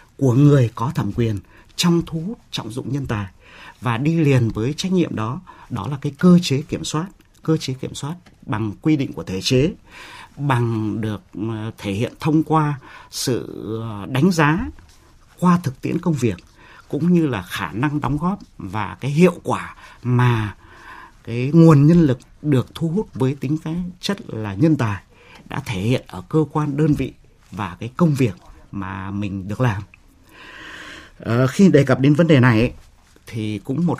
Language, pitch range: Vietnamese, 105-155 Hz